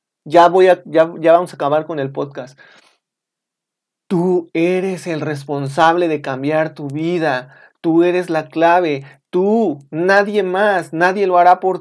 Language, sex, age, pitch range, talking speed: Spanish, male, 40-59, 140-175 Hz, 135 wpm